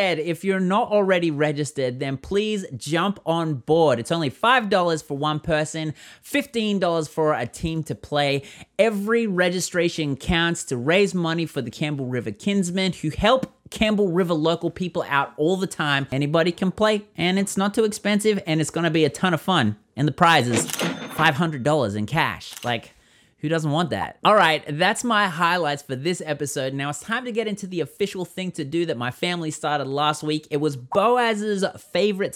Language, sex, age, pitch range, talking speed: English, male, 30-49, 140-185 Hz, 185 wpm